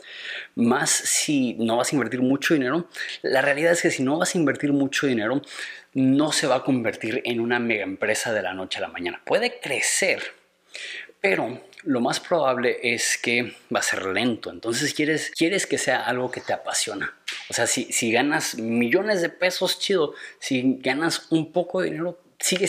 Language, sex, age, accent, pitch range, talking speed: Spanish, male, 30-49, Mexican, 120-155 Hz, 190 wpm